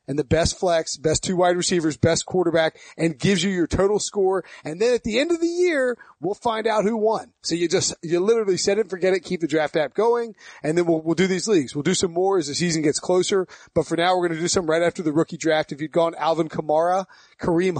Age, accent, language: 30-49, American, English